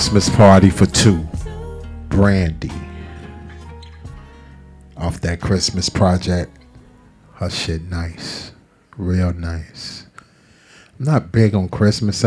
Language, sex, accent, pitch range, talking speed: English, male, American, 85-100 Hz, 95 wpm